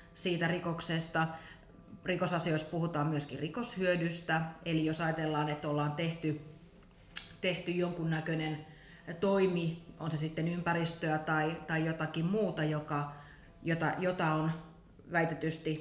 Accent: native